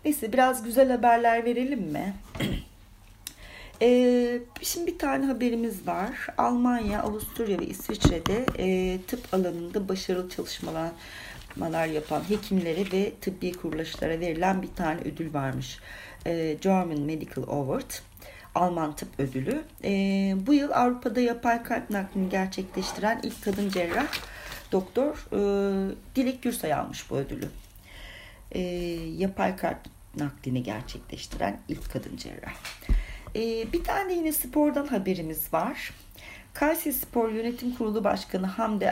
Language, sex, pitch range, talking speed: Turkish, female, 165-245 Hz, 120 wpm